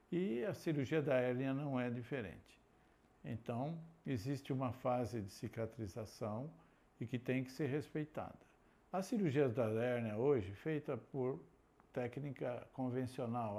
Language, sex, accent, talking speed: Portuguese, male, Brazilian, 130 wpm